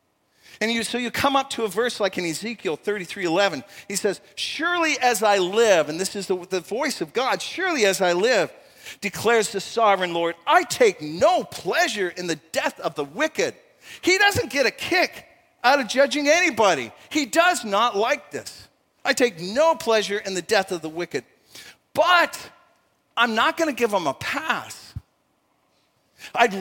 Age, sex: 50-69, male